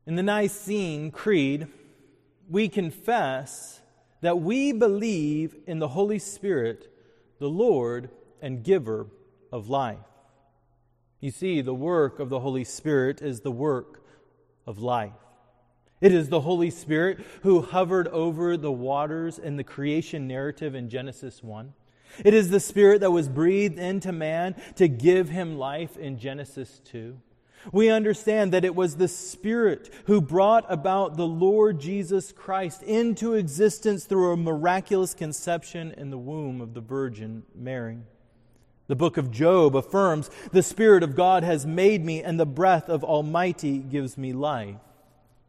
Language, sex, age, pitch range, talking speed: English, male, 30-49, 125-180 Hz, 150 wpm